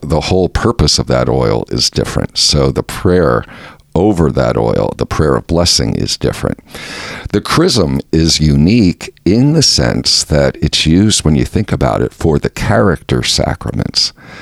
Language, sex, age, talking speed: English, male, 50-69, 160 wpm